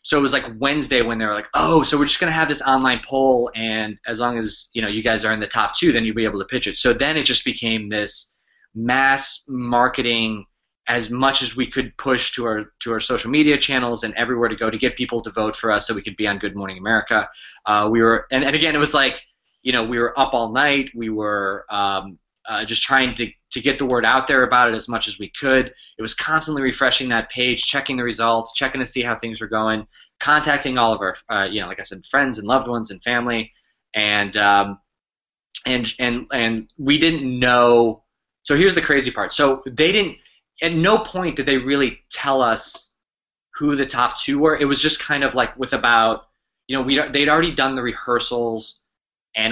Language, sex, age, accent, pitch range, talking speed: English, male, 20-39, American, 110-135 Hz, 235 wpm